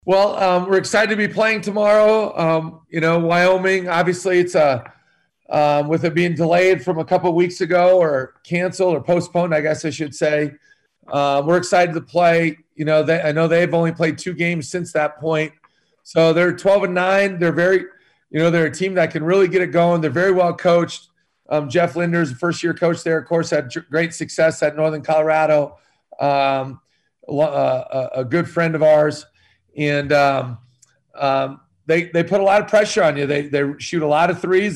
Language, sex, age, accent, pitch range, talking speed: English, male, 40-59, American, 155-180 Hz, 200 wpm